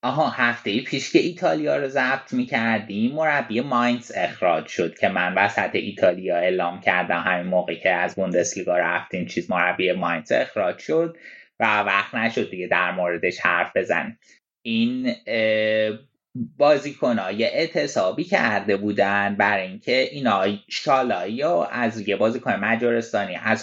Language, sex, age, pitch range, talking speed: Persian, male, 20-39, 105-125 Hz, 135 wpm